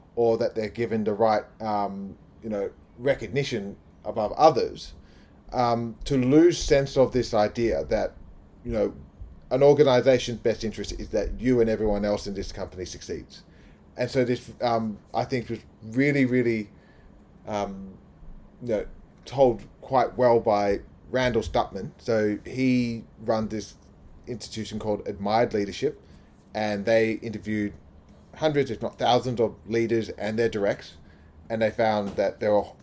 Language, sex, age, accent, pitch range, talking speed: English, male, 30-49, Australian, 95-125 Hz, 145 wpm